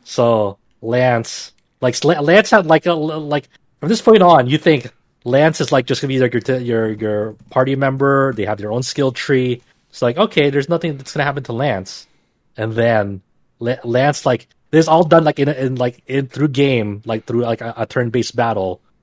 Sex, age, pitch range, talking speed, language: male, 30-49, 110-135 Hz, 205 wpm, English